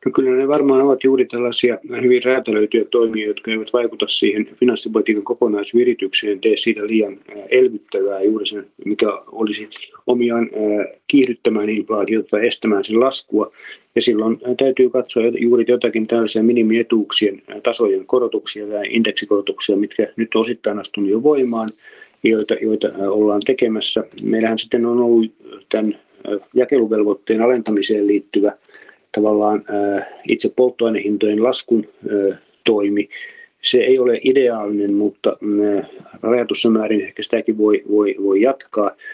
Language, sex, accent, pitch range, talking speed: Finnish, male, native, 105-125 Hz, 125 wpm